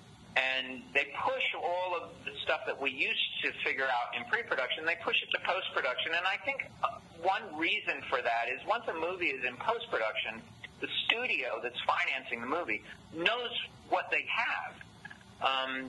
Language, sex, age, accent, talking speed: English, male, 40-59, American, 170 wpm